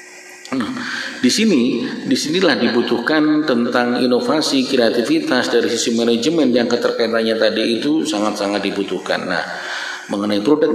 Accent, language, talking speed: native, Indonesian, 110 wpm